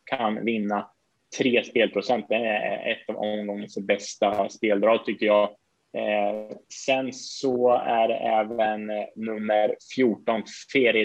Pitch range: 105-125 Hz